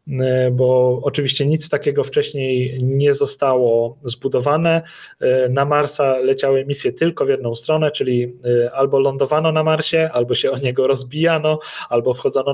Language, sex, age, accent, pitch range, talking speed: Polish, male, 30-49, native, 130-150 Hz, 135 wpm